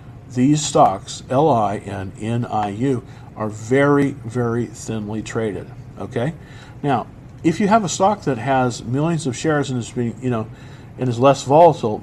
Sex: male